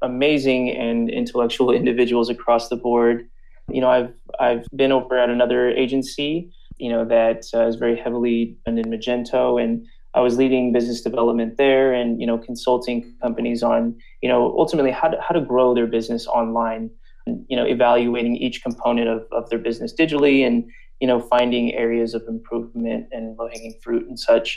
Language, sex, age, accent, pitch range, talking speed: English, male, 20-39, American, 120-130 Hz, 170 wpm